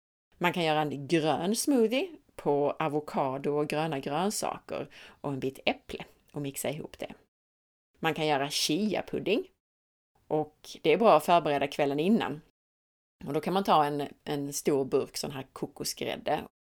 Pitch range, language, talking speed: 145-195 Hz, Swedish, 160 wpm